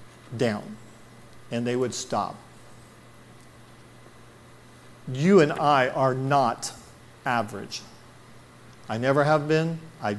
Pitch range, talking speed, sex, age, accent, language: 120-165 Hz, 95 wpm, male, 50-69, American, English